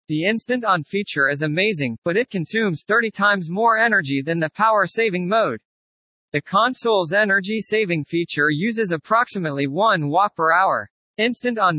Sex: male